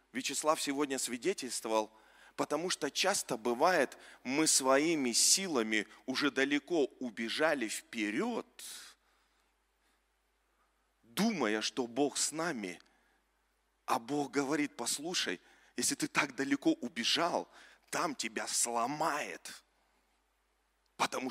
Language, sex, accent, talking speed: Russian, male, native, 90 wpm